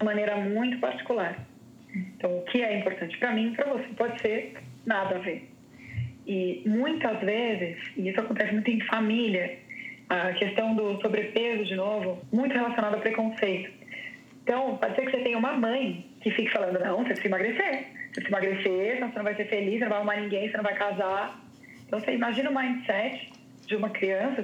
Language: Portuguese